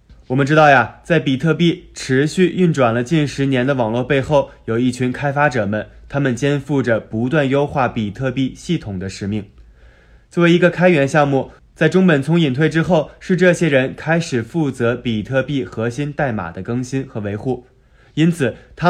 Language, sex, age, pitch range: Chinese, male, 20-39, 115-155 Hz